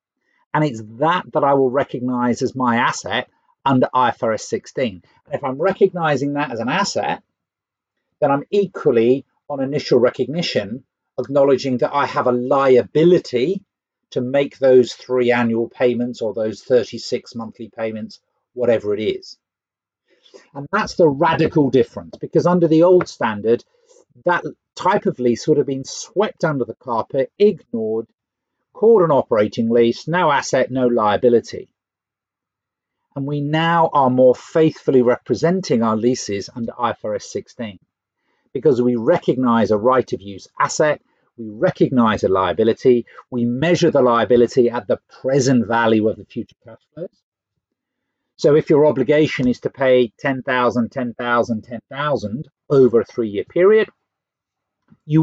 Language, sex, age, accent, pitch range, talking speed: English, male, 50-69, British, 120-160 Hz, 140 wpm